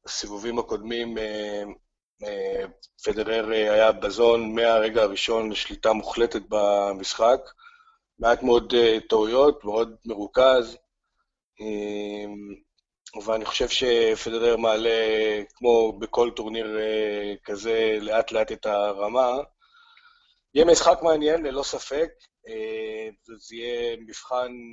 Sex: male